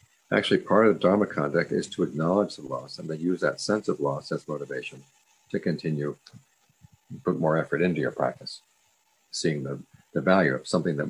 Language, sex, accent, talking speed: English, male, American, 190 wpm